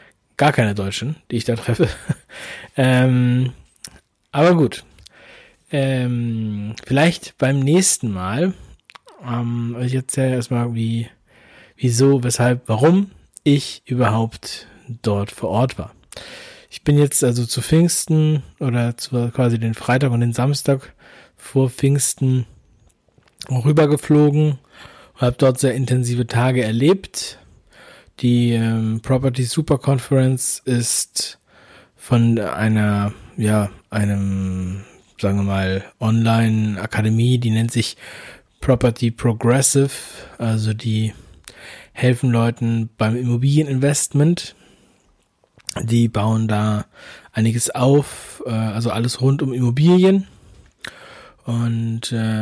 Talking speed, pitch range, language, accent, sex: 105 wpm, 110-135 Hz, German, German, male